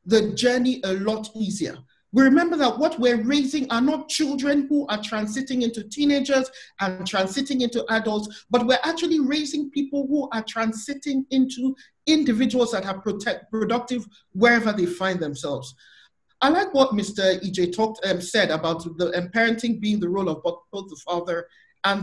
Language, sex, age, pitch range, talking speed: English, male, 50-69, 195-270 Hz, 165 wpm